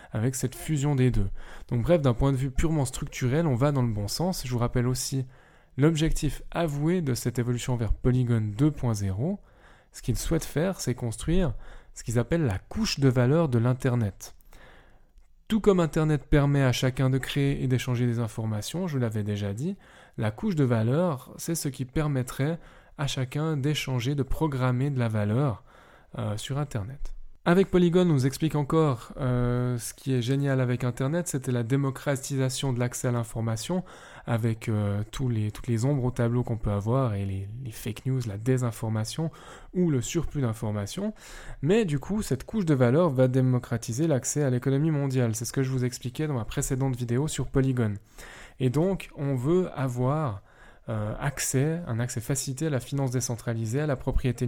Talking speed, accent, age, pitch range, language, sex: 185 wpm, French, 20-39, 120-150 Hz, French, male